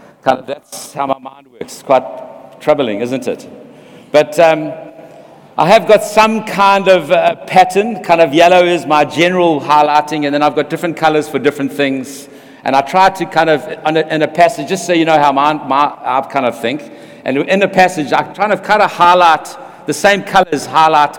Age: 60-79